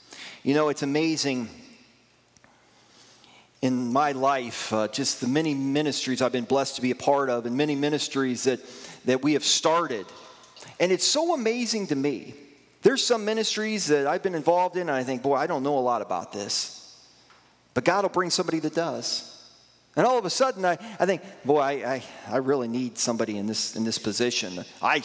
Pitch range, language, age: 125-180 Hz, English, 40-59